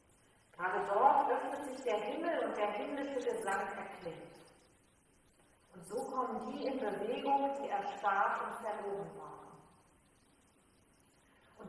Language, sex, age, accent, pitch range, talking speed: German, female, 40-59, German, 195-250 Hz, 120 wpm